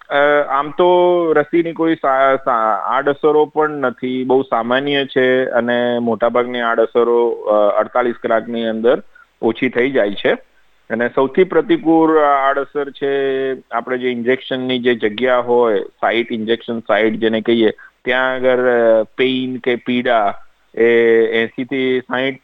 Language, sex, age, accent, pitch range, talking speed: Gujarati, male, 50-69, native, 110-140 Hz, 120 wpm